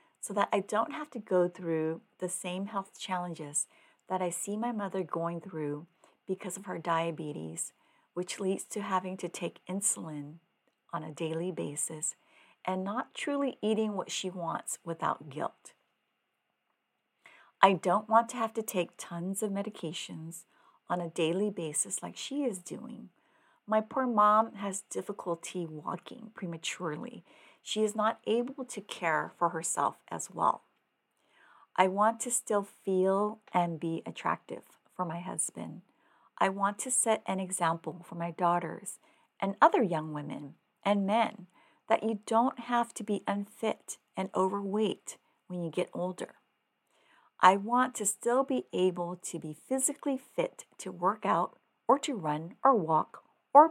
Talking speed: 150 wpm